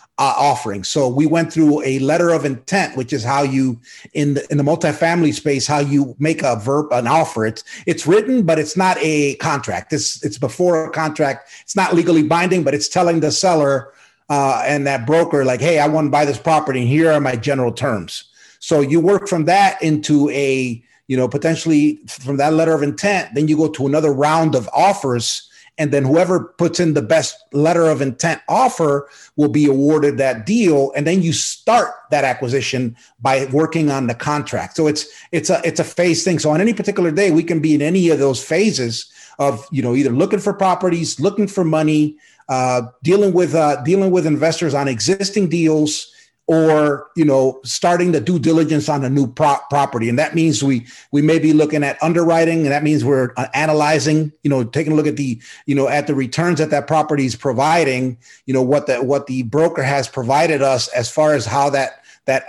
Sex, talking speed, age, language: male, 210 wpm, 30-49, English